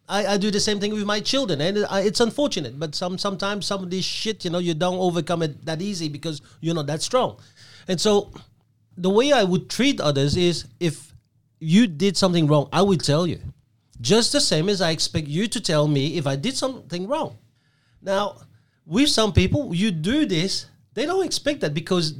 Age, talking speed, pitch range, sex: 40-59, 210 wpm, 150-220 Hz, male